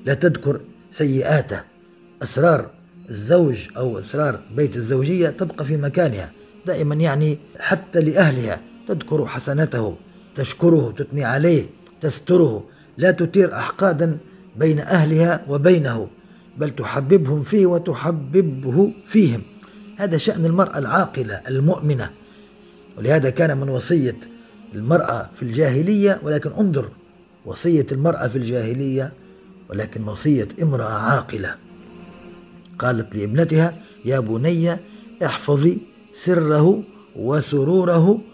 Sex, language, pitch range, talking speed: male, Arabic, 135-180 Hz, 95 wpm